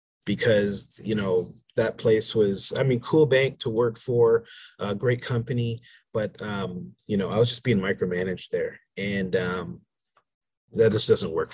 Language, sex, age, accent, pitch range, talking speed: English, male, 30-49, American, 105-145 Hz, 170 wpm